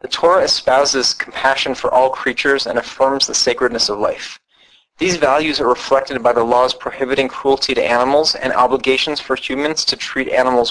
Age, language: 30-49, English